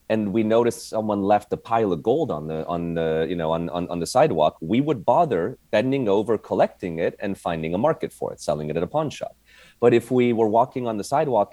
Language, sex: English, male